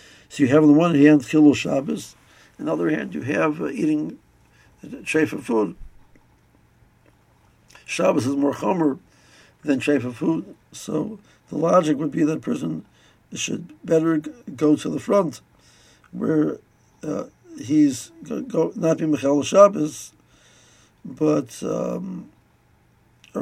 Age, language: 60-79, English